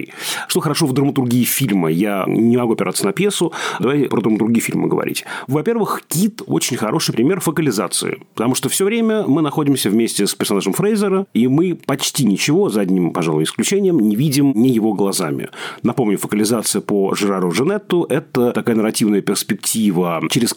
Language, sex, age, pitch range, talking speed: Russian, male, 40-59, 105-145 Hz, 160 wpm